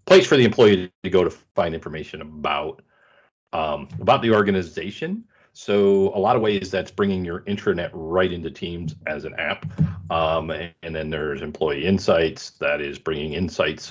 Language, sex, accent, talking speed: English, male, American, 170 wpm